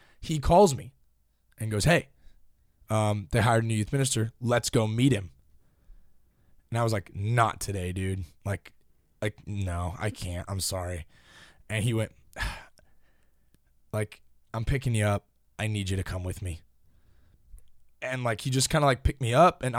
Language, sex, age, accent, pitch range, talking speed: English, male, 20-39, American, 100-135 Hz, 175 wpm